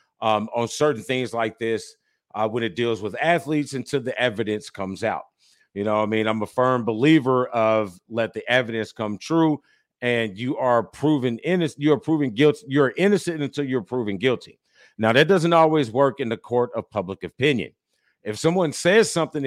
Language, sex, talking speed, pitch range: English, male, 185 wpm, 110-150 Hz